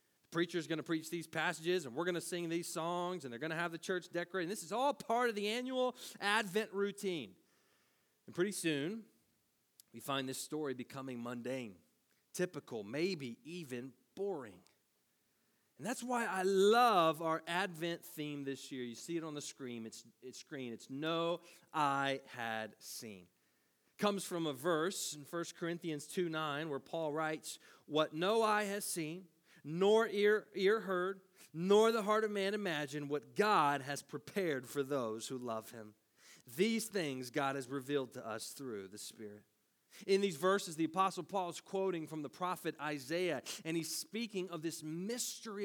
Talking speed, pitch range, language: 170 wpm, 145-205 Hz, English